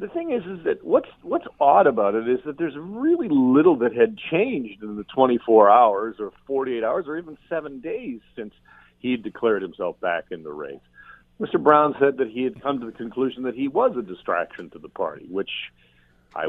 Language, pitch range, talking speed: English, 105-155 Hz, 210 wpm